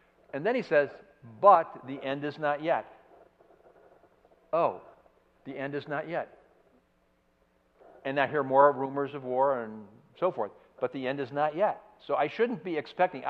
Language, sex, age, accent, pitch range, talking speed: English, male, 60-79, American, 125-160 Hz, 165 wpm